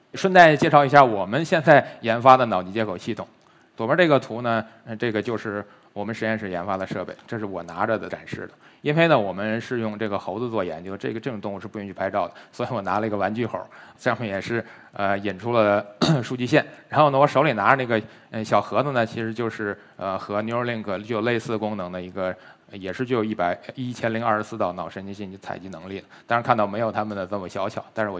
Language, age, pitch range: Chinese, 20-39, 100-130 Hz